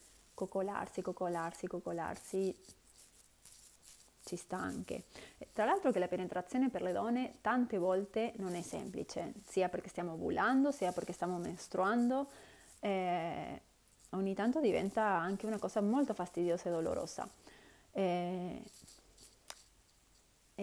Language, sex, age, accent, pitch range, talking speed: Italian, female, 30-49, native, 180-205 Hz, 110 wpm